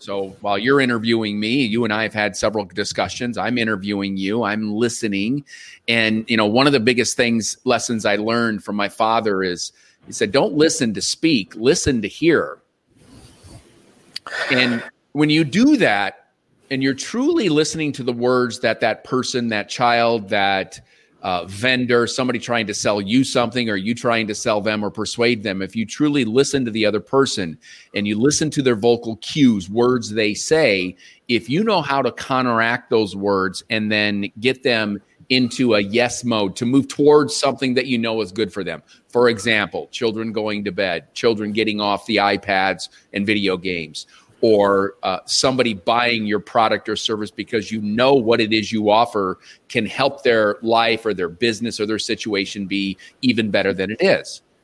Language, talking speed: English, 185 wpm